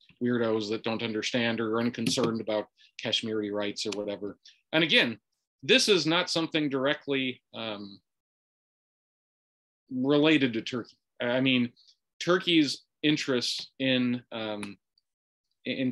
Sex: male